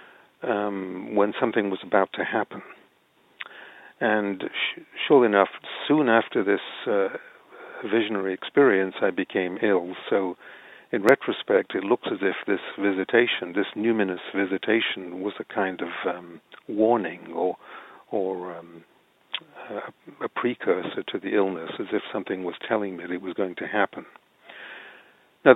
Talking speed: 140 wpm